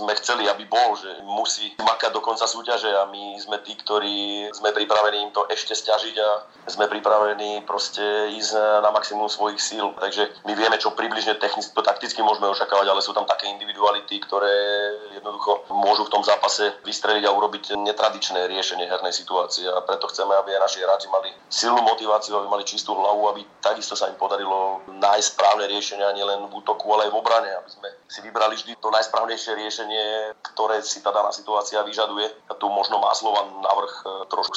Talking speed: 180 wpm